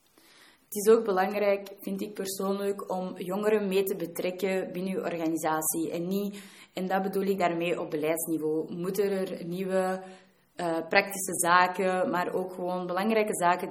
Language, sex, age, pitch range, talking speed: Dutch, female, 20-39, 175-200 Hz, 155 wpm